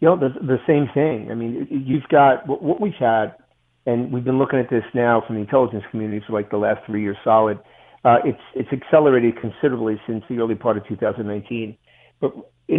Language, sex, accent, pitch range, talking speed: English, male, American, 110-130 Hz, 210 wpm